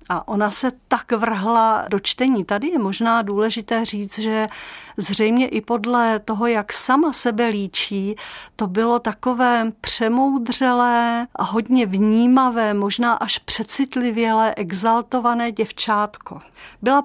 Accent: native